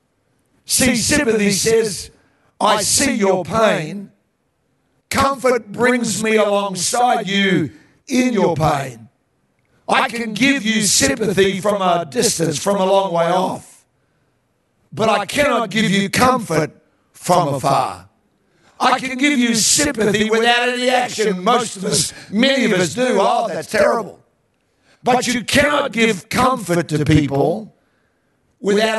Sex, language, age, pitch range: male, English, 60-79, 190-240 Hz